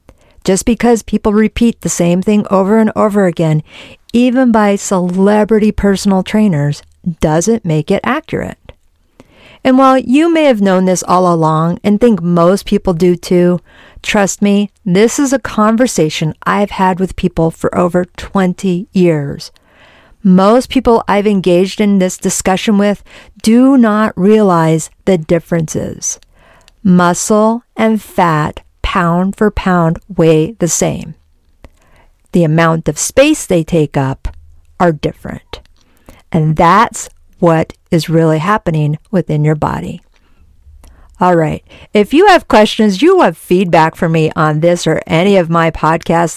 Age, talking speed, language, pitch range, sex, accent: 50-69, 140 wpm, English, 160-215 Hz, female, American